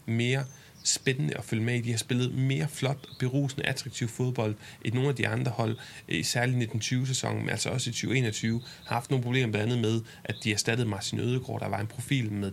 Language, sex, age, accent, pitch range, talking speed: Danish, male, 30-49, native, 110-135 Hz, 230 wpm